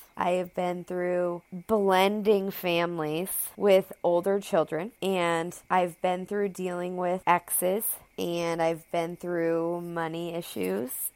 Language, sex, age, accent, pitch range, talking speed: English, female, 20-39, American, 165-195 Hz, 120 wpm